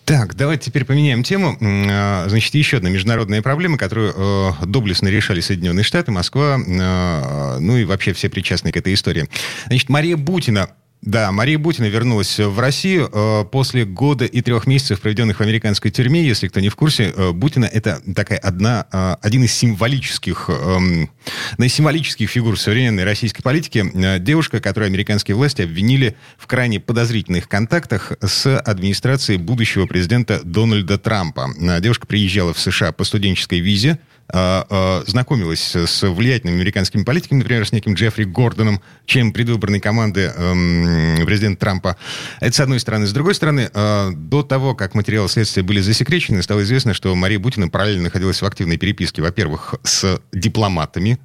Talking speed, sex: 150 wpm, male